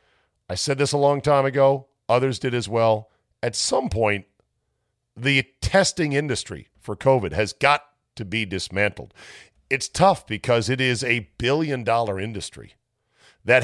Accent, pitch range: American, 105-135 Hz